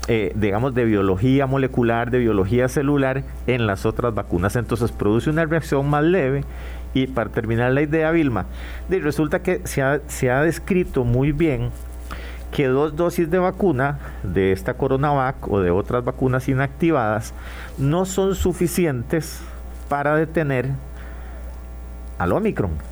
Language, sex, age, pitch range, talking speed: Spanish, male, 50-69, 85-140 Hz, 140 wpm